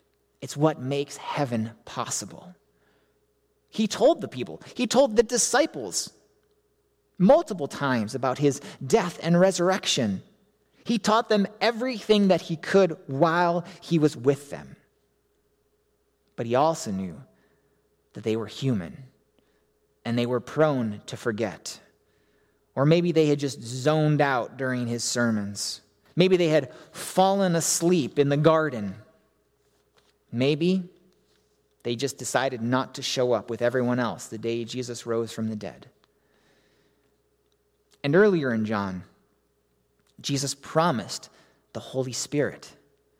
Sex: male